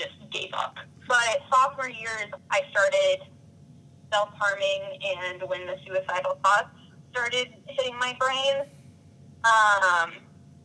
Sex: female